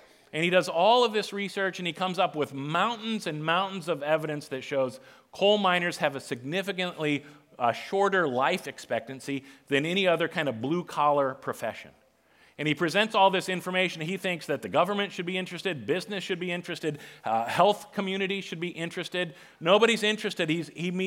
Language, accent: English, American